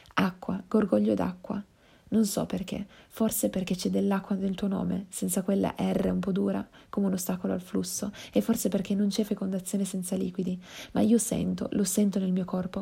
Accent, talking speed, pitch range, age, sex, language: native, 185 wpm, 185-220 Hz, 30-49, female, Italian